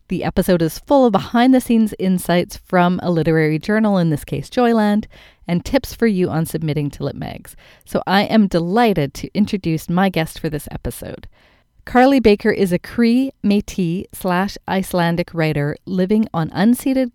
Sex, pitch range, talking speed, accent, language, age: female, 160-205 Hz, 165 wpm, American, English, 40-59